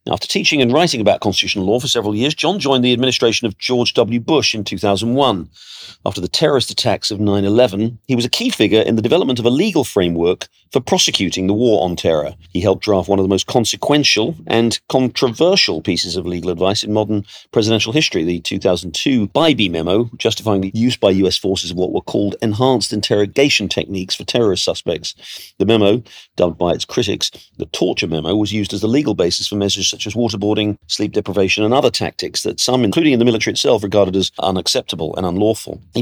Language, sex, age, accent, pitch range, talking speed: English, male, 40-59, British, 95-120 Hz, 200 wpm